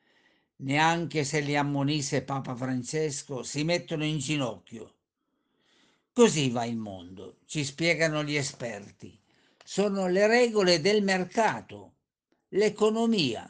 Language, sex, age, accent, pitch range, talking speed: Italian, male, 50-69, native, 140-200 Hz, 105 wpm